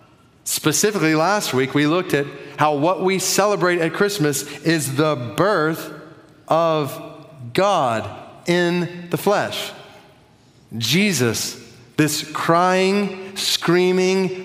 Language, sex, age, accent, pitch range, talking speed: English, male, 30-49, American, 135-180 Hz, 100 wpm